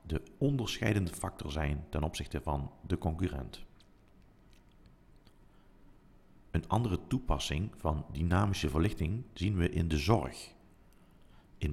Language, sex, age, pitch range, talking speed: Dutch, male, 50-69, 75-100 Hz, 105 wpm